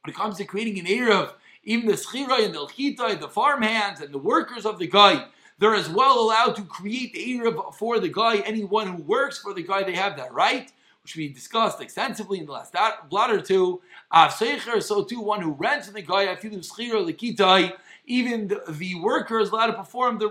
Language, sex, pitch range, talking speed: English, male, 195-235 Hz, 215 wpm